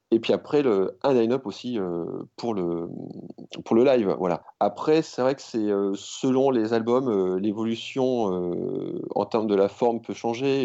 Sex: male